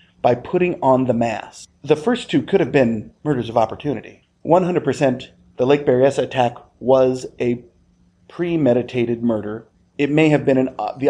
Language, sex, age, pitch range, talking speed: English, male, 40-59, 115-140 Hz, 155 wpm